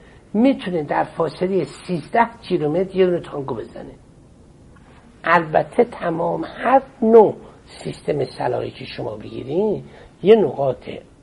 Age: 60-79